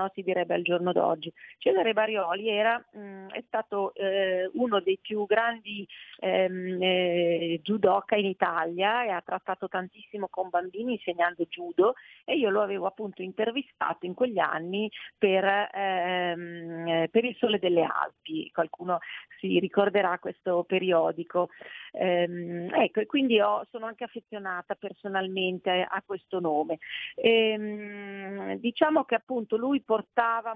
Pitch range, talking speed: 180-210 Hz, 135 wpm